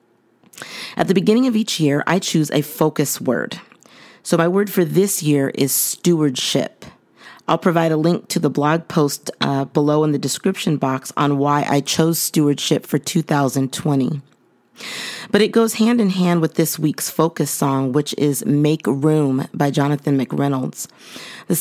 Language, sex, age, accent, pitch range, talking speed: English, female, 40-59, American, 140-165 Hz, 165 wpm